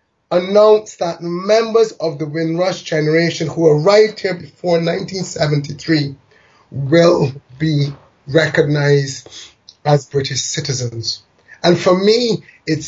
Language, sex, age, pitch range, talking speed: English, male, 30-49, 145-185 Hz, 100 wpm